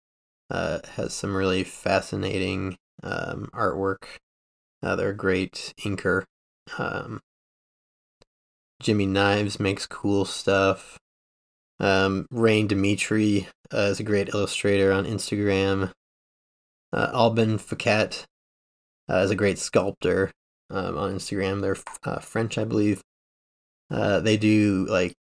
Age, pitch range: 20-39, 95-105 Hz